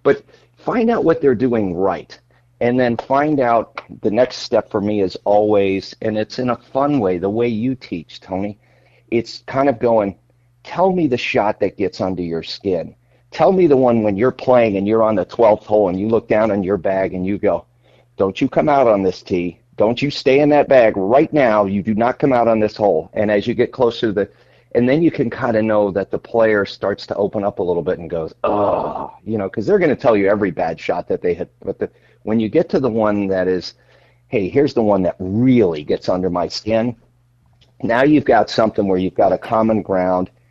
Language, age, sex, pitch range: English, 40-59, male, 100-120 Hz